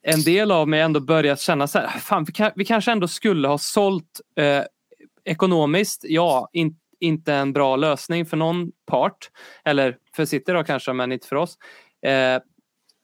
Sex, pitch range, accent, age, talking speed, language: male, 140-175 Hz, native, 20-39, 170 wpm, Swedish